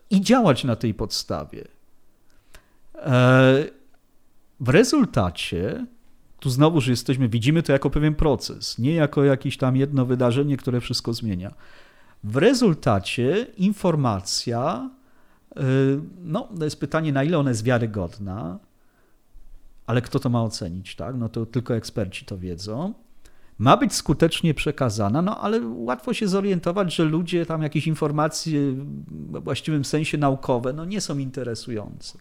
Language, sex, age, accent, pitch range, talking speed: Polish, male, 40-59, native, 120-165 Hz, 130 wpm